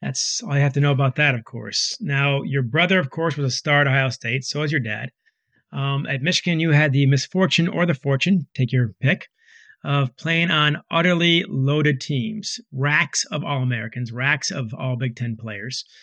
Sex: male